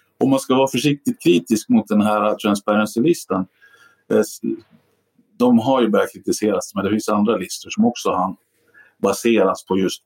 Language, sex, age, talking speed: Swedish, male, 50-69, 150 wpm